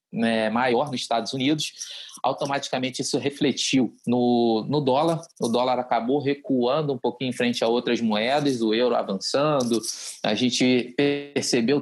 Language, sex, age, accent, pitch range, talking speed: Portuguese, male, 20-39, Brazilian, 120-145 Hz, 140 wpm